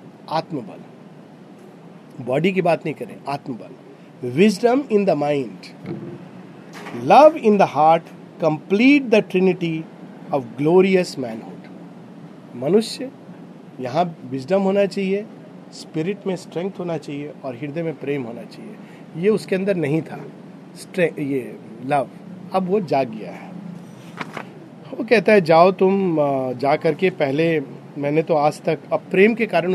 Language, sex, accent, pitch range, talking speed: Hindi, male, native, 155-195 Hz, 125 wpm